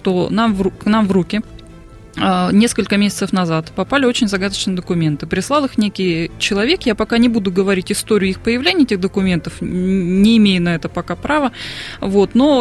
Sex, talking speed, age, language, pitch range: female, 160 wpm, 20-39, Russian, 185-235 Hz